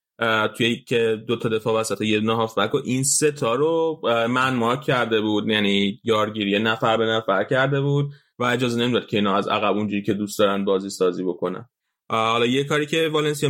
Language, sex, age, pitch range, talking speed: Persian, male, 20-39, 110-135 Hz, 195 wpm